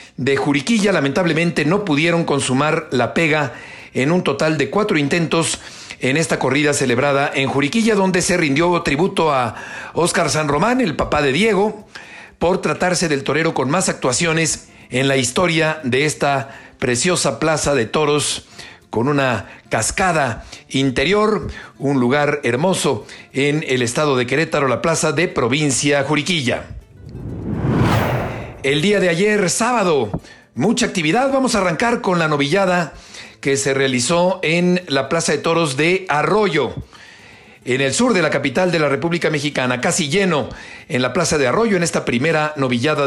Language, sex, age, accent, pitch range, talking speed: Spanish, male, 50-69, Mexican, 140-190 Hz, 150 wpm